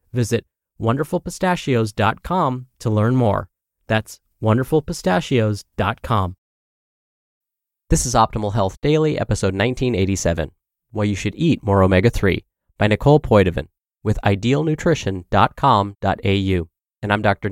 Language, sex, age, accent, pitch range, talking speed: English, male, 30-49, American, 95-125 Hz, 95 wpm